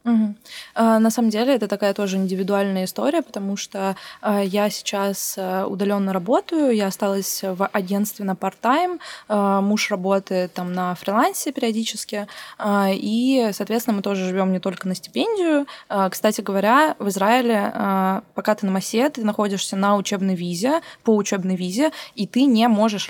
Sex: female